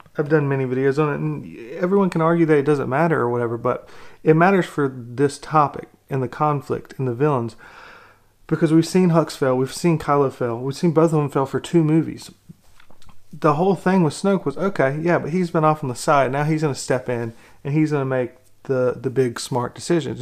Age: 30-49